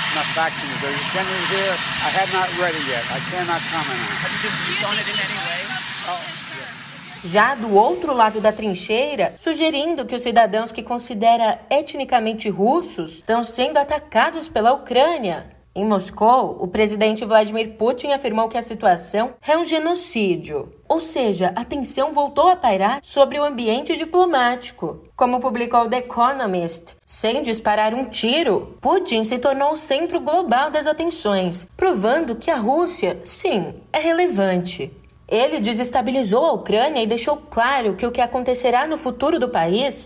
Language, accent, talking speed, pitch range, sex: Portuguese, Brazilian, 120 wpm, 210-290 Hz, female